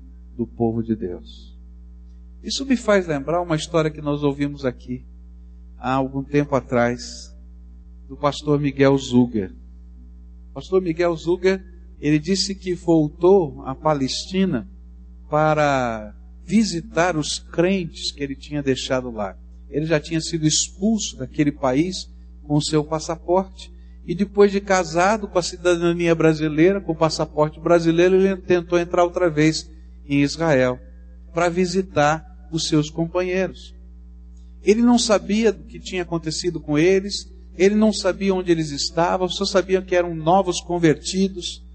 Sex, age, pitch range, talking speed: male, 60-79, 120-195 Hz, 135 wpm